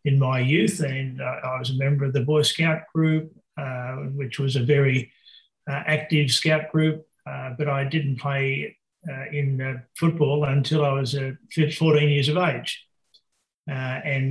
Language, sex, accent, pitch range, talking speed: English, male, Australian, 130-150 Hz, 170 wpm